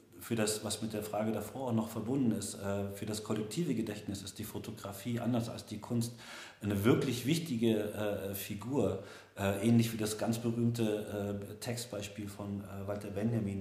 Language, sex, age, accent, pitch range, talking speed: German, male, 40-59, German, 100-115 Hz, 155 wpm